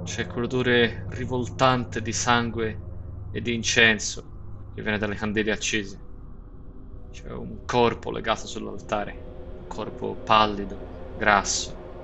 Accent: native